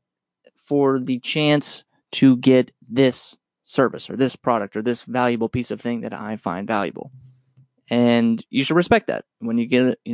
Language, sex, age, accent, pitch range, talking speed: English, male, 20-39, American, 120-155 Hz, 180 wpm